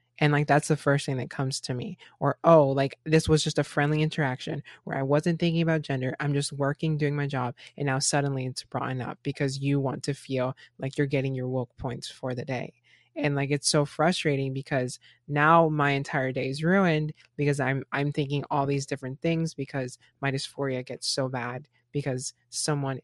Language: English